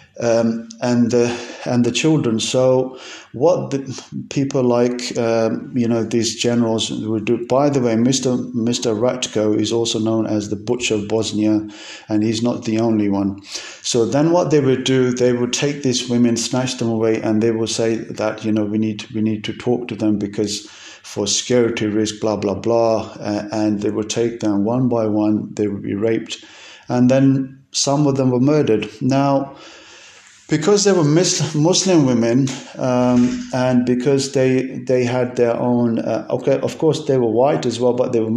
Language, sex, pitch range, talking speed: English, male, 110-130 Hz, 190 wpm